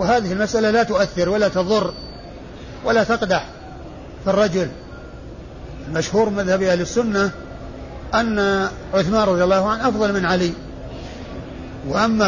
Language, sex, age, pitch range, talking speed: Arabic, male, 50-69, 180-210 Hz, 110 wpm